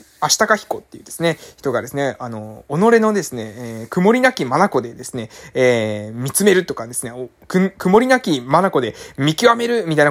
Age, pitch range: 20-39, 150-220 Hz